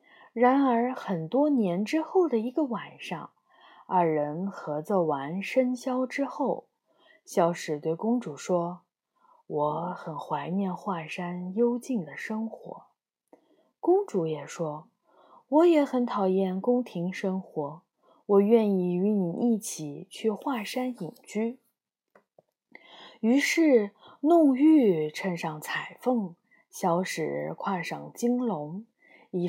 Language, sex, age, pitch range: Chinese, female, 20-39, 180-275 Hz